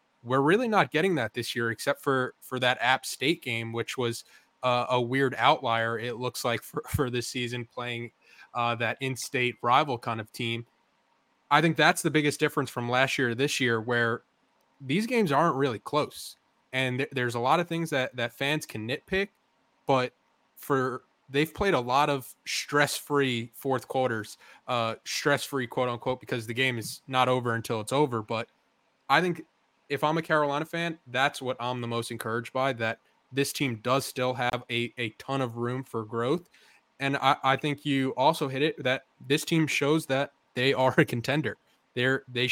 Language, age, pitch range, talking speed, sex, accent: English, 20-39, 120-140 Hz, 190 wpm, male, American